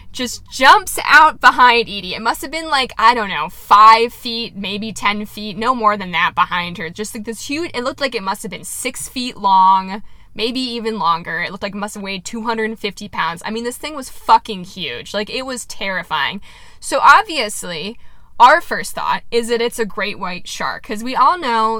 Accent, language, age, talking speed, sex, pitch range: American, English, 10-29, 220 wpm, female, 195-285 Hz